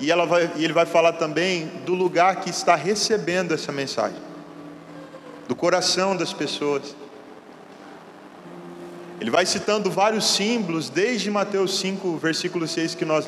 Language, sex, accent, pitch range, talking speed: Portuguese, male, Brazilian, 165-205 Hz, 135 wpm